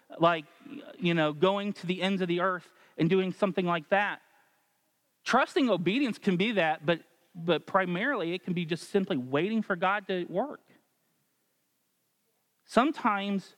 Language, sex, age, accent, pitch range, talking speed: English, male, 30-49, American, 180-230 Hz, 150 wpm